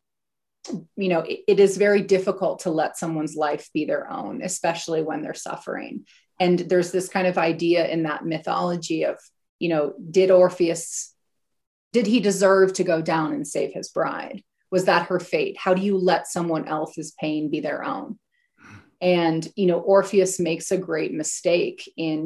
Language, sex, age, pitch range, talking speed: English, female, 30-49, 160-185 Hz, 175 wpm